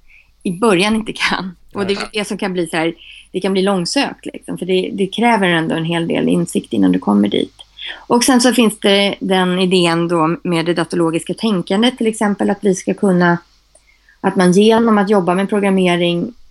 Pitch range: 175-220 Hz